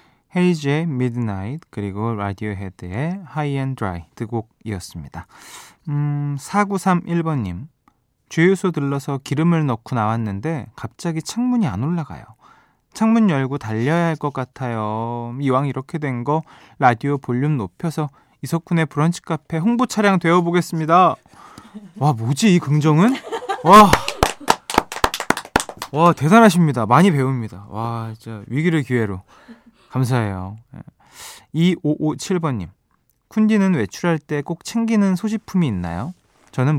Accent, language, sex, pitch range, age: native, Korean, male, 120-175 Hz, 20-39